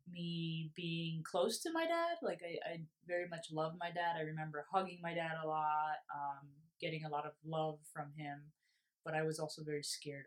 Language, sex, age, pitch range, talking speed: English, female, 20-39, 150-170 Hz, 205 wpm